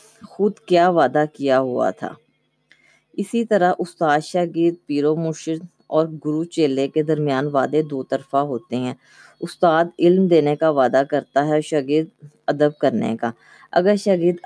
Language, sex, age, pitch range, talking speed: Urdu, female, 20-39, 145-170 Hz, 145 wpm